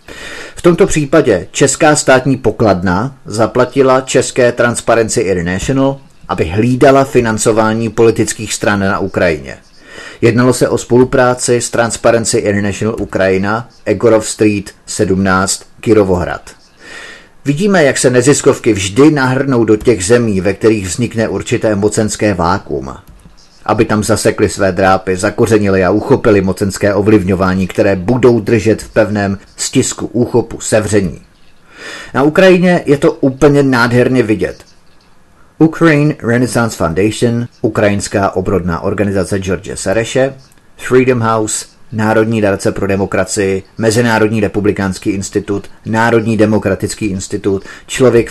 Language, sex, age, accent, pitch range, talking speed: Czech, male, 30-49, native, 100-125 Hz, 110 wpm